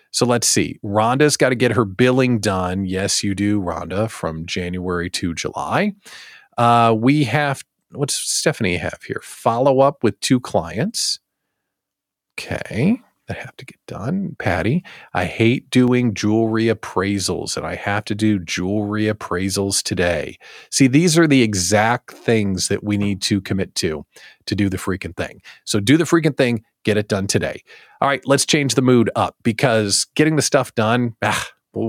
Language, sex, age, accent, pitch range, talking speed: English, male, 40-59, American, 100-140 Hz, 165 wpm